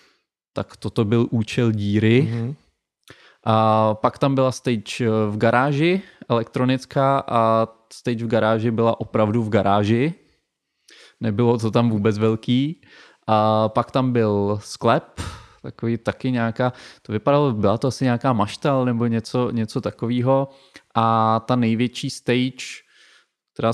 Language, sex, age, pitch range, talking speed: Czech, male, 20-39, 110-130 Hz, 120 wpm